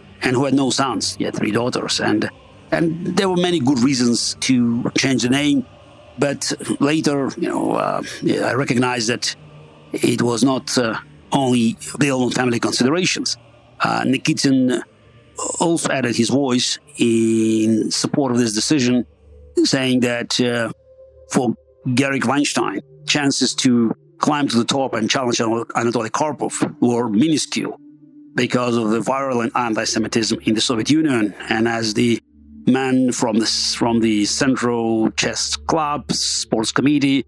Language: English